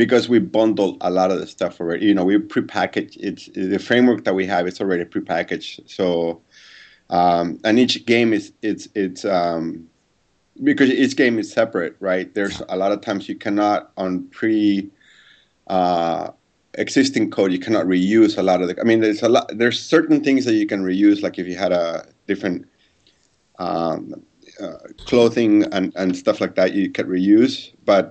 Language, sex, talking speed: English, male, 185 wpm